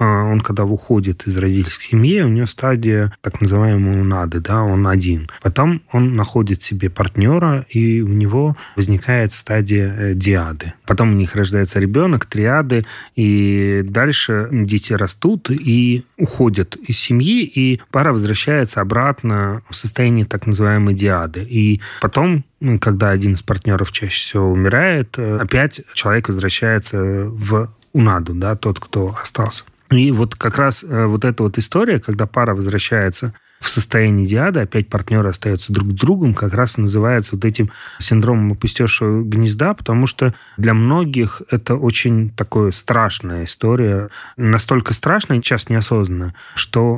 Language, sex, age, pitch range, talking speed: Russian, male, 30-49, 100-125 Hz, 140 wpm